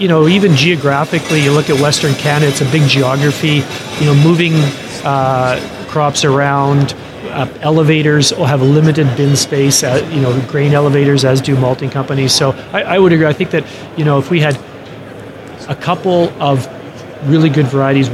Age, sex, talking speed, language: 30-49, male, 175 wpm, English